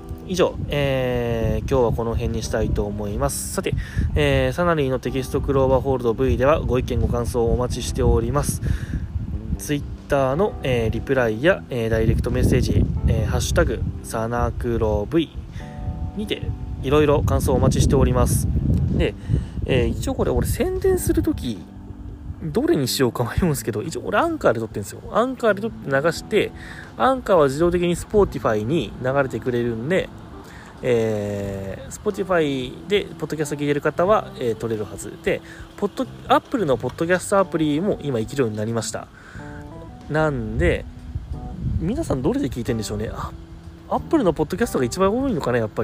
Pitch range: 110-155 Hz